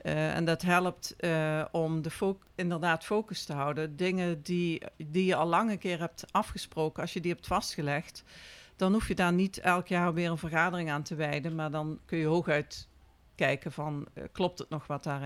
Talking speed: 200 wpm